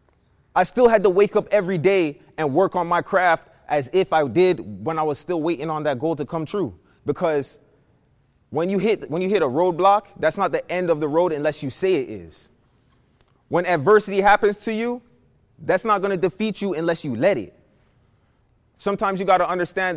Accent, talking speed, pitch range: American, 205 wpm, 145-185 Hz